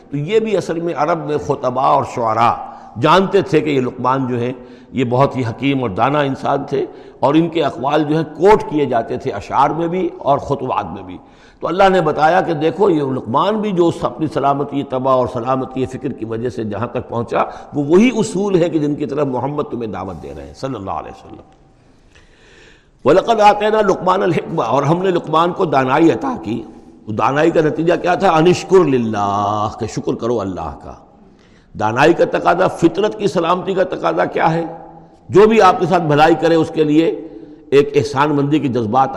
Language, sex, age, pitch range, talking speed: Urdu, male, 60-79, 125-180 Hz, 200 wpm